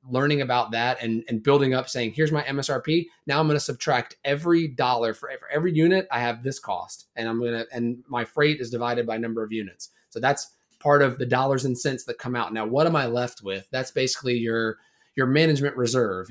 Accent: American